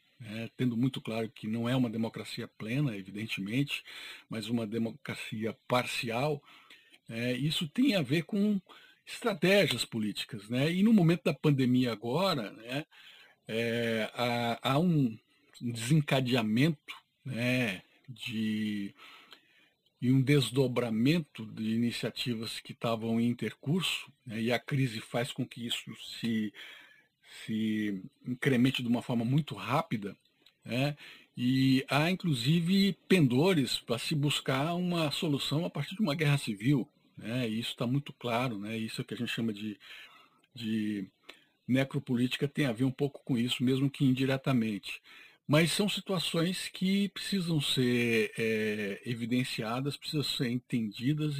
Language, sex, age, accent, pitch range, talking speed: English, male, 50-69, Brazilian, 115-150 Hz, 130 wpm